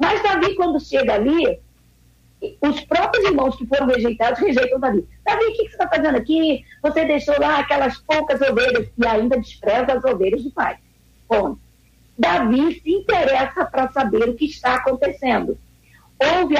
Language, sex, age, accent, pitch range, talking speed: Portuguese, female, 50-69, Brazilian, 240-305 Hz, 165 wpm